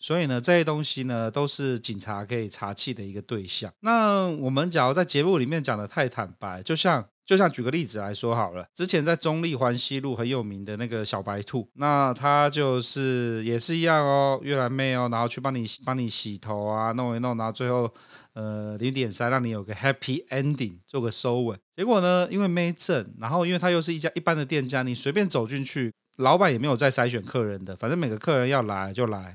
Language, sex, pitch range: Chinese, male, 115-150 Hz